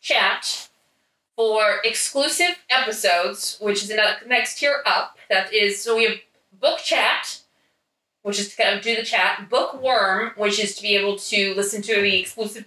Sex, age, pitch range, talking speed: female, 20-39, 200-255 Hz, 170 wpm